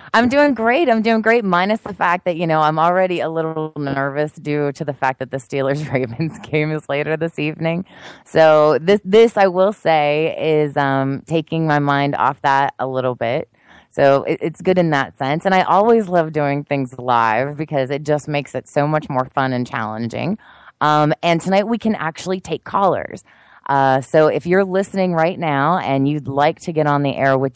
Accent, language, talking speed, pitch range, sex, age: American, English, 205 wpm, 135-170 Hz, female, 20-39